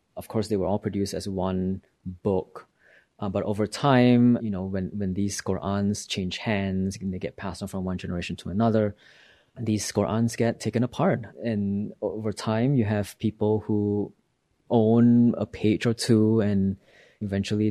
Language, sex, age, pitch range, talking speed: English, male, 30-49, 95-115 Hz, 170 wpm